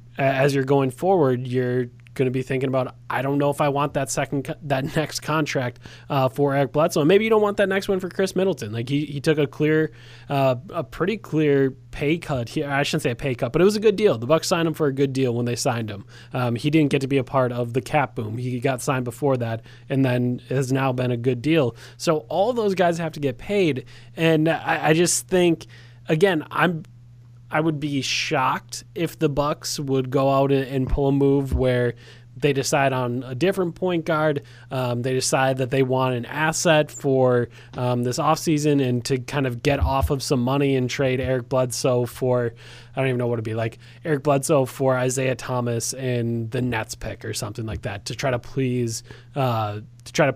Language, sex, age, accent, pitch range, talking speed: English, male, 20-39, American, 125-150 Hz, 225 wpm